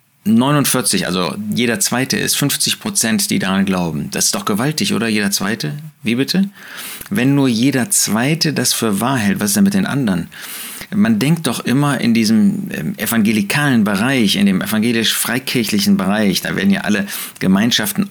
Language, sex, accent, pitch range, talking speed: German, male, German, 135-205 Hz, 165 wpm